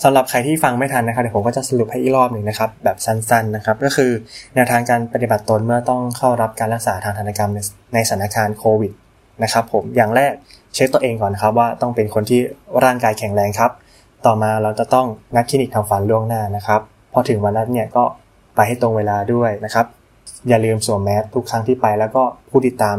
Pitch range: 105-125 Hz